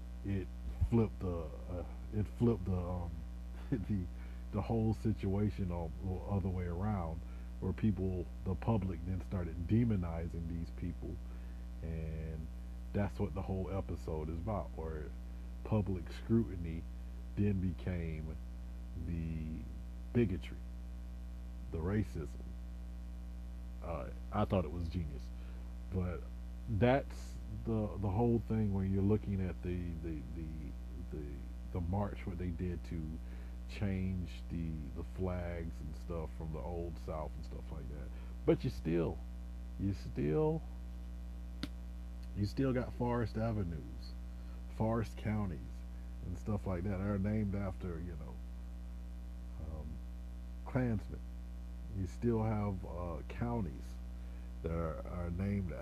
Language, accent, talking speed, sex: English, American, 125 wpm, male